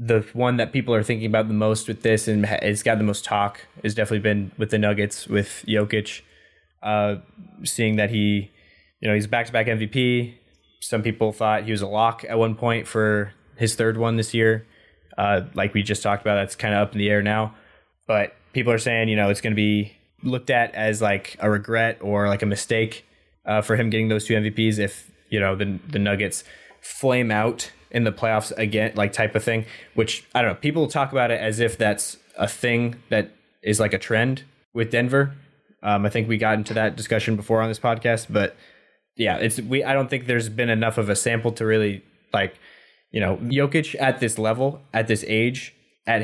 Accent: American